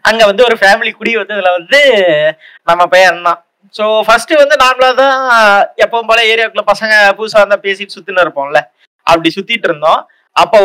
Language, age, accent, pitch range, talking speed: Tamil, 20-39, native, 170-230 Hz, 160 wpm